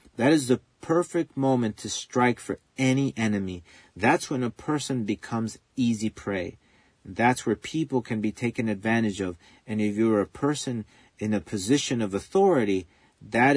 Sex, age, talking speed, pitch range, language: male, 40-59, 160 wpm, 100-130 Hz, English